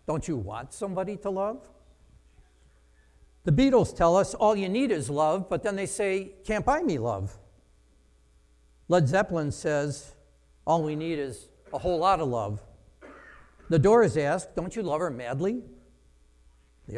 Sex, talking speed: male, 155 wpm